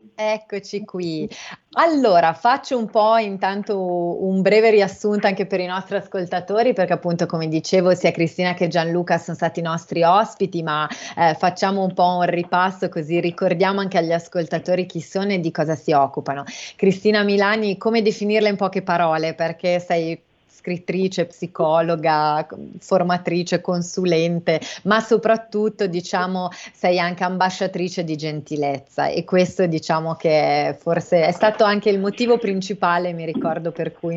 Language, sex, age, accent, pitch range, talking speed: Italian, female, 30-49, native, 165-195 Hz, 145 wpm